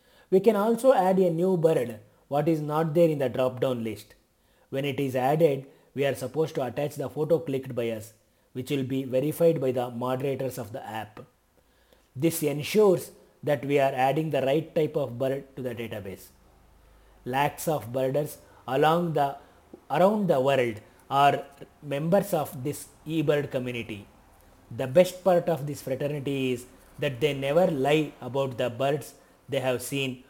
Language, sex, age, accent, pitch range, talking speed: Kannada, male, 30-49, native, 130-165 Hz, 170 wpm